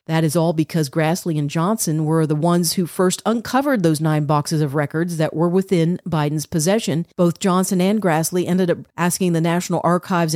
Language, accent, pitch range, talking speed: English, American, 160-190 Hz, 190 wpm